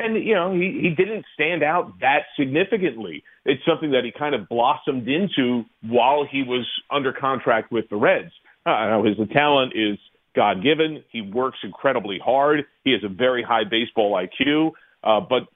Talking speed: 175 wpm